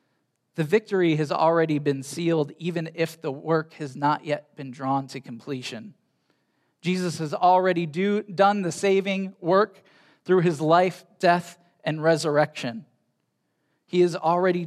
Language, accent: English, American